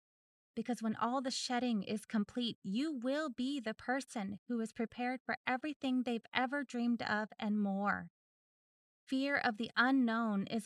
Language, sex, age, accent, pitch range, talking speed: English, female, 20-39, American, 215-255 Hz, 160 wpm